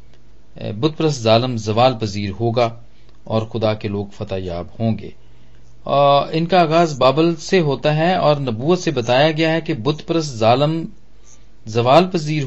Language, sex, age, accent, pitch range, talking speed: English, male, 40-59, Indian, 115-140 Hz, 160 wpm